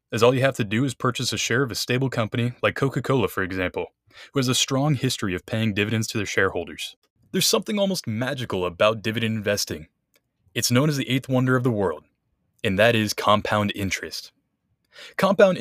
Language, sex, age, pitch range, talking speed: English, male, 20-39, 110-145 Hz, 195 wpm